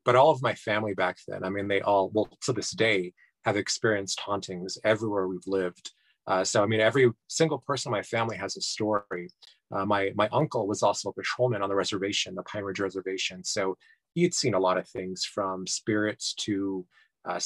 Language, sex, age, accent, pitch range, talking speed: English, male, 30-49, American, 100-125 Hz, 200 wpm